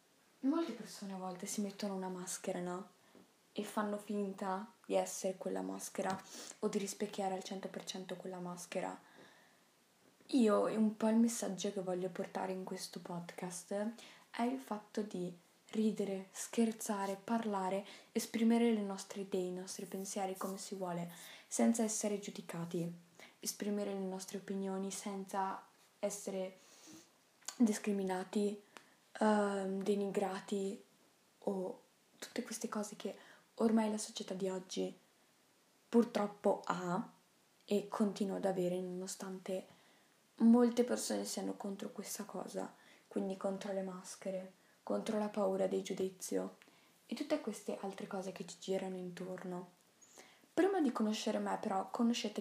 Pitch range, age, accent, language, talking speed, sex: 190-215 Hz, 10-29, native, Italian, 125 wpm, female